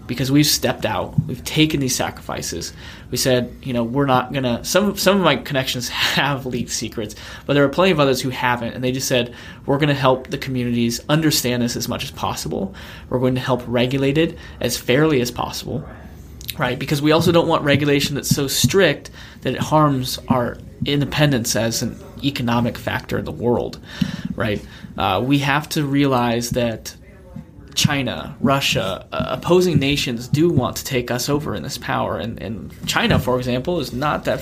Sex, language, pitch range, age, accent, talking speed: male, English, 120-145 Hz, 20-39, American, 190 wpm